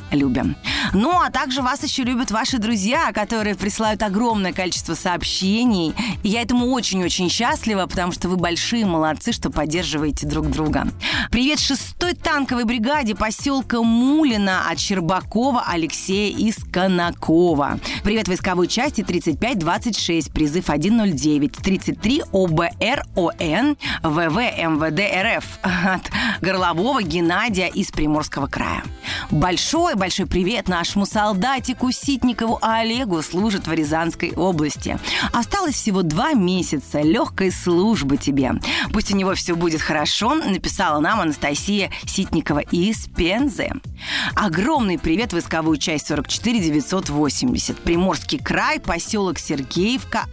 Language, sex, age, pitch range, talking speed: Russian, female, 30-49, 165-235 Hz, 110 wpm